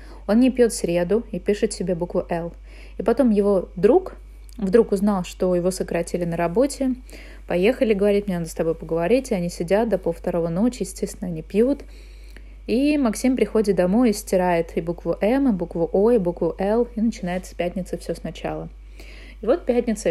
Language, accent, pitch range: Russian, native, 170-210 Hz